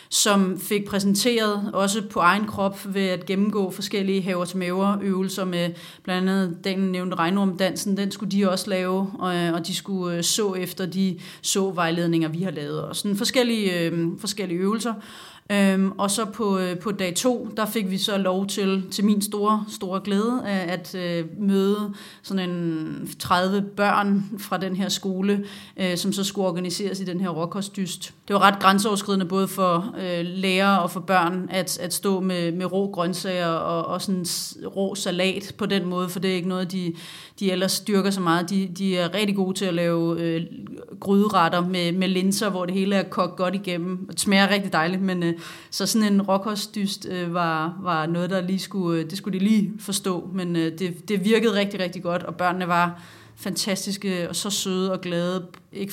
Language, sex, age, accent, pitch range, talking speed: Danish, female, 30-49, native, 180-200 Hz, 185 wpm